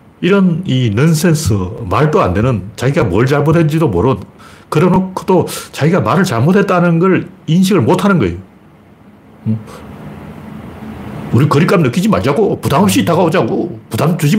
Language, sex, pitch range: Korean, male, 105-160 Hz